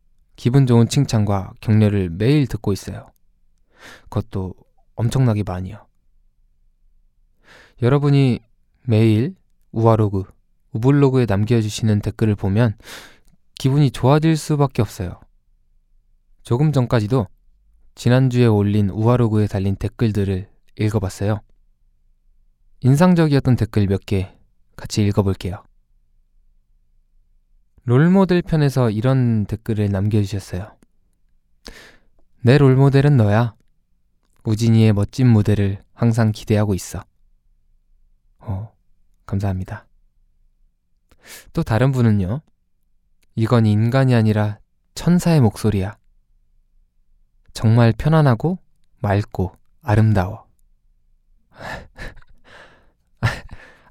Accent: native